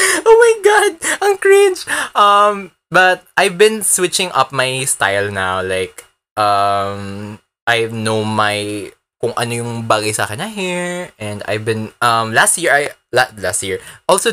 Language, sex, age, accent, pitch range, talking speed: Filipino, male, 20-39, native, 115-175 Hz, 145 wpm